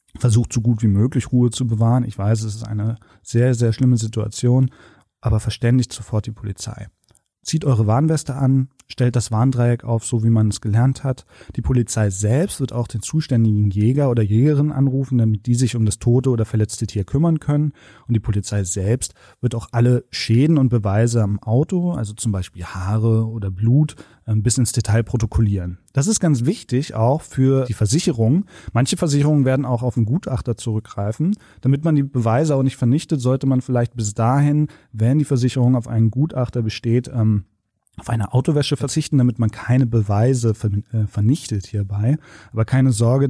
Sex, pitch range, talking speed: male, 110-130 Hz, 175 wpm